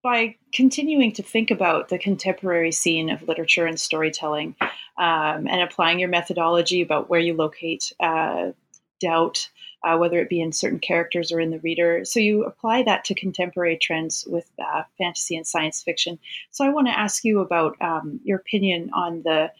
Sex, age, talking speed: female, 30-49, 180 wpm